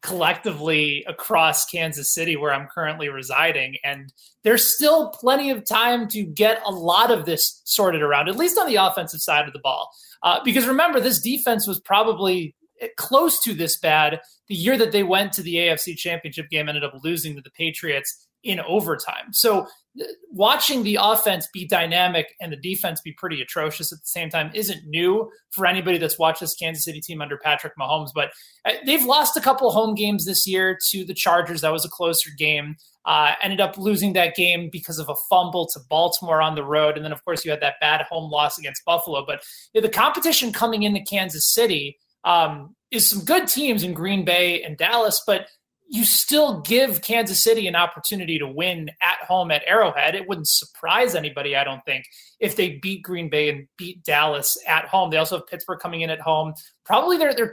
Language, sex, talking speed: English, male, 200 wpm